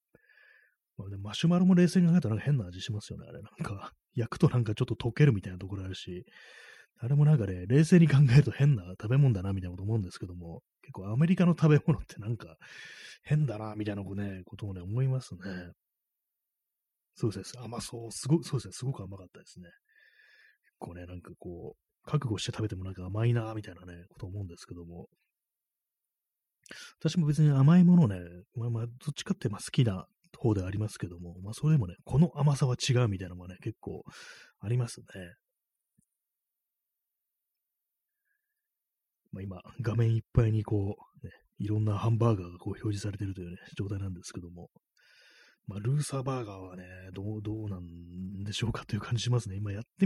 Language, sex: Japanese, male